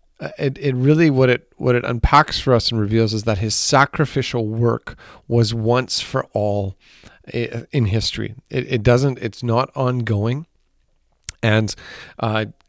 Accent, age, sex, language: American, 40-59, male, English